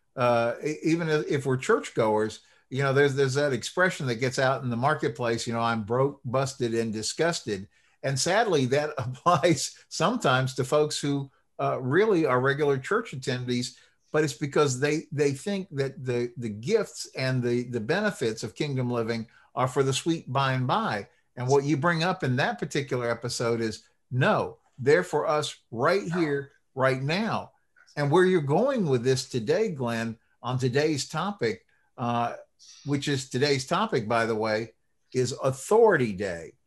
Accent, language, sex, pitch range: American, English, male, 120-155 Hz